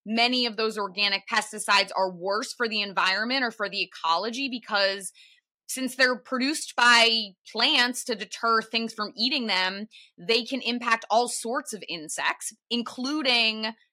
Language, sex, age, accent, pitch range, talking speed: English, female, 20-39, American, 195-245 Hz, 145 wpm